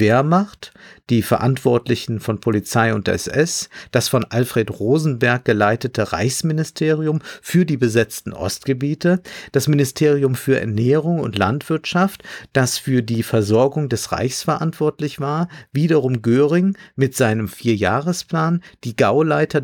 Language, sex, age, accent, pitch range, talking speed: German, male, 50-69, German, 125-155 Hz, 120 wpm